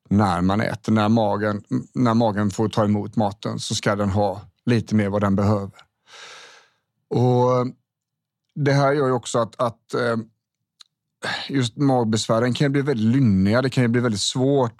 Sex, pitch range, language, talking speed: male, 110-130 Hz, Swedish, 165 wpm